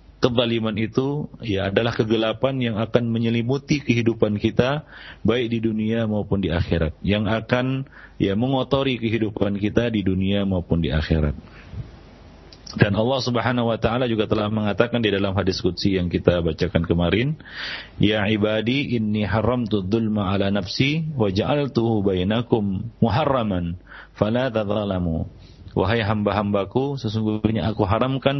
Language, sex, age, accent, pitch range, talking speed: English, male, 40-59, Indonesian, 95-120 Hz, 125 wpm